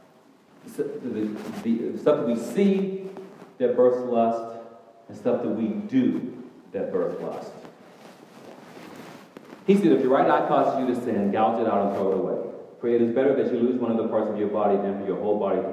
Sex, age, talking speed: male, 40-59, 200 wpm